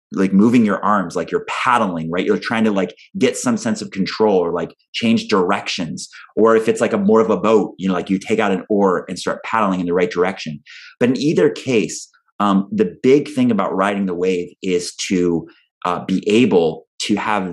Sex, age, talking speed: male, 30-49, 220 wpm